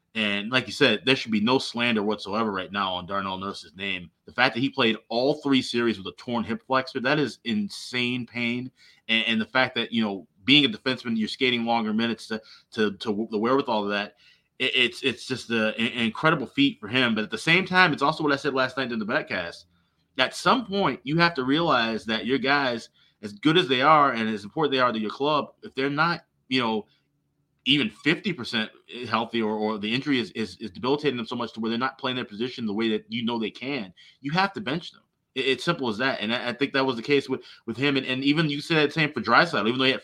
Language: English